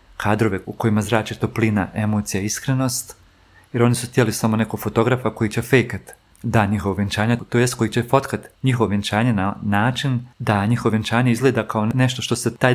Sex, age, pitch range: male, 40-59, 100-120 Hz